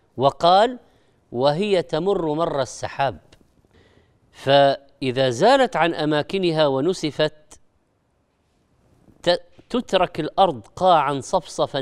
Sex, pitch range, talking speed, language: female, 130-180 Hz, 70 wpm, Arabic